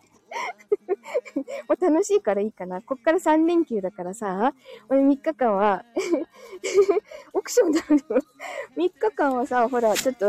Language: Japanese